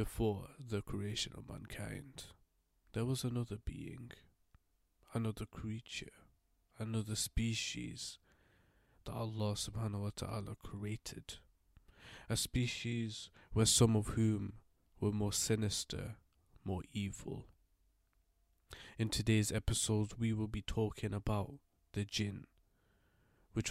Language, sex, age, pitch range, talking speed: English, male, 20-39, 95-110 Hz, 105 wpm